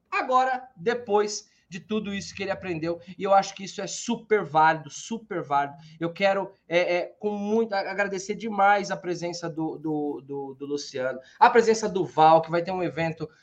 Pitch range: 165-230 Hz